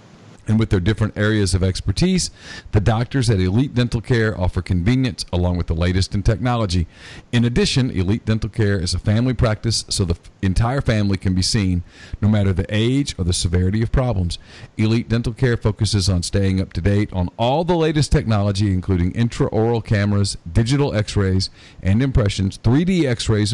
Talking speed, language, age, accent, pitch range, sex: 175 wpm, English, 40-59, American, 95-120 Hz, male